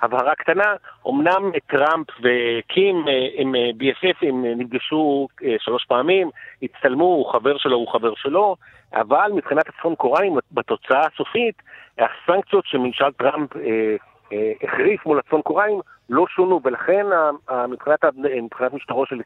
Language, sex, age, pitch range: Hebrew, male, 50-69, 130-190 Hz